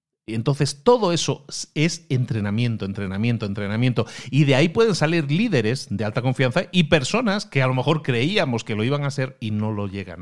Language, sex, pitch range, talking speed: Spanish, male, 110-140 Hz, 190 wpm